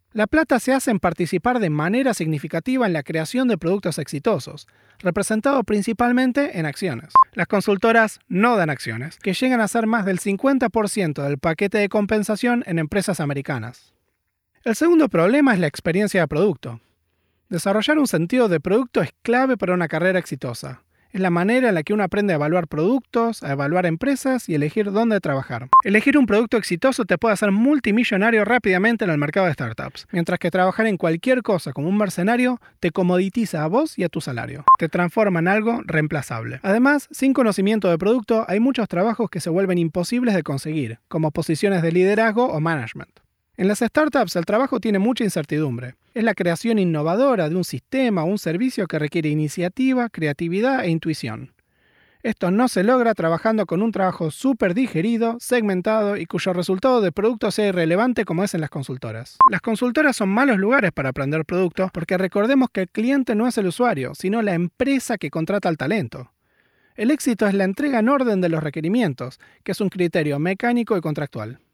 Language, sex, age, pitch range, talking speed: Spanish, male, 30-49, 165-230 Hz, 185 wpm